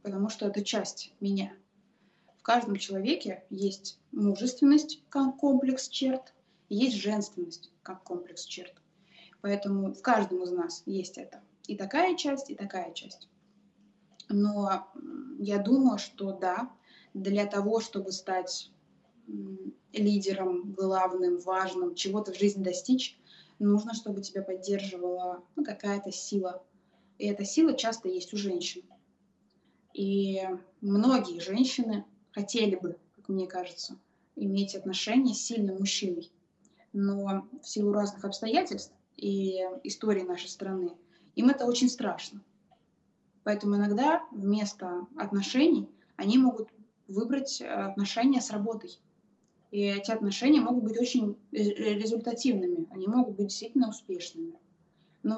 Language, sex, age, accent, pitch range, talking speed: Russian, female, 20-39, native, 190-230 Hz, 120 wpm